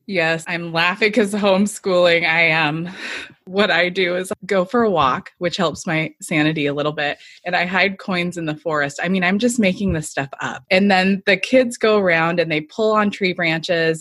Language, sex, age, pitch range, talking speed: English, female, 20-39, 160-195 Hz, 210 wpm